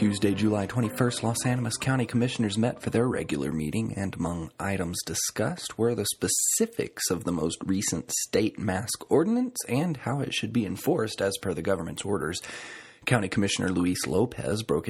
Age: 30-49